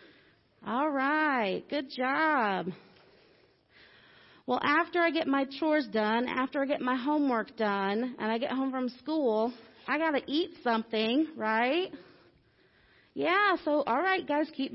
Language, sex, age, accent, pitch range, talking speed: English, female, 30-49, American, 260-345 Hz, 140 wpm